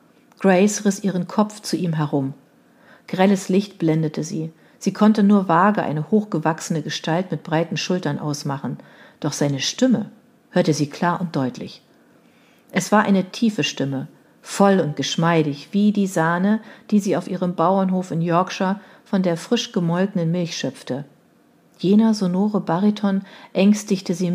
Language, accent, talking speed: German, German, 145 wpm